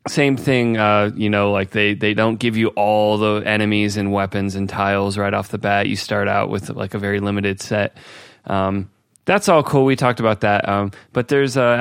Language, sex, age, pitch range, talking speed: English, male, 20-39, 100-120 Hz, 220 wpm